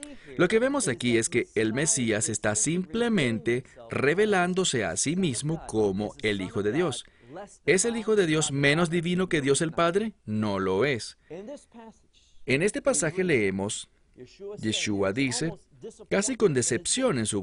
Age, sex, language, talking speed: 40-59, male, English, 150 wpm